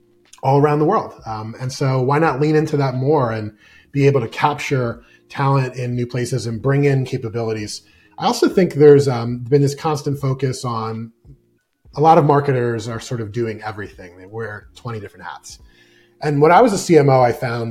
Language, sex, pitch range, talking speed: English, male, 115-155 Hz, 195 wpm